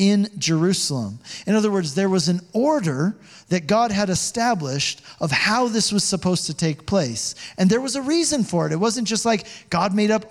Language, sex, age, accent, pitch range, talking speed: English, male, 40-59, American, 160-215 Hz, 205 wpm